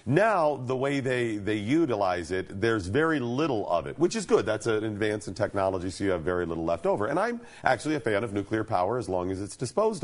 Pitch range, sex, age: 105-150 Hz, male, 40-59